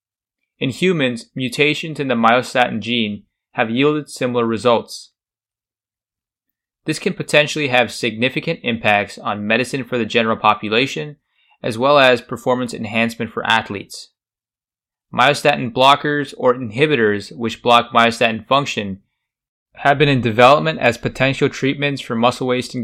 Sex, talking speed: male, 125 wpm